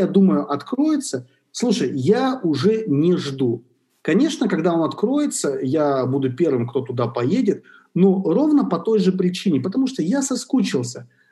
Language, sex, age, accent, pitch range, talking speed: Russian, male, 40-59, native, 130-190 Hz, 150 wpm